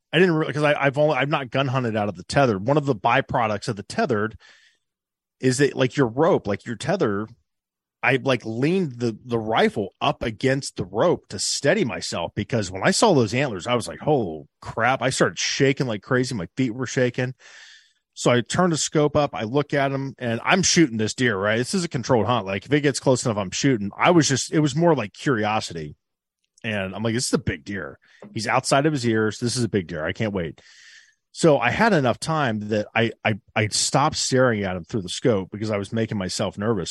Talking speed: 230 wpm